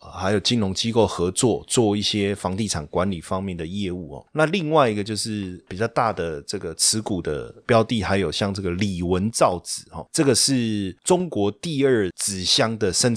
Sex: male